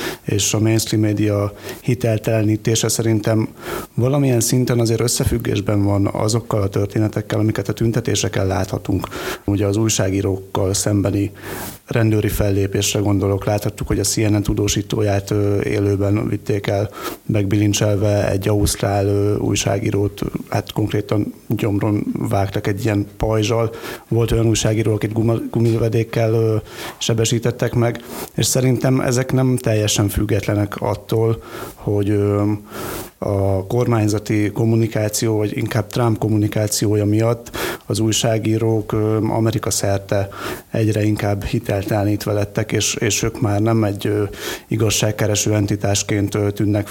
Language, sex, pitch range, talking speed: Hungarian, male, 100-115 Hz, 110 wpm